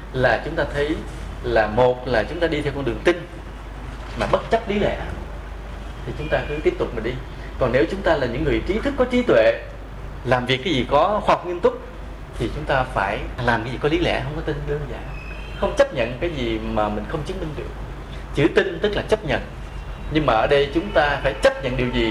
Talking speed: 245 wpm